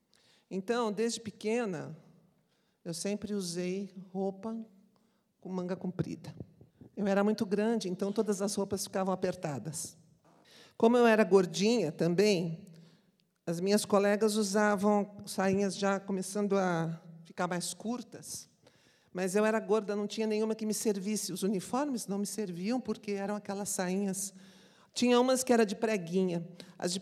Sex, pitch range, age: male, 185-215 Hz, 50-69